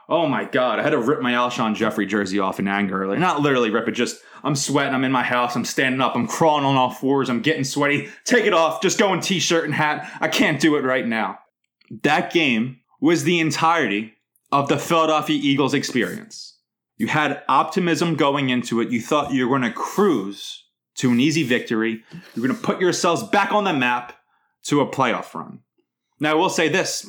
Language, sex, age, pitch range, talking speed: English, male, 20-39, 125-165 Hz, 215 wpm